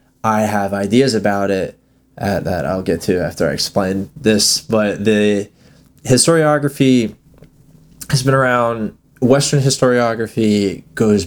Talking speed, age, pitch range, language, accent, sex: 120 wpm, 20-39, 100-125 Hz, English, American, male